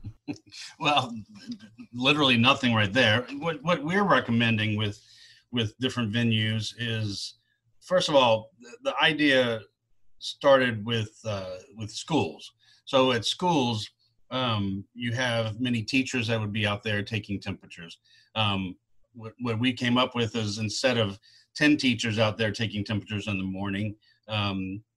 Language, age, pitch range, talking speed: English, 40-59, 105-120 Hz, 145 wpm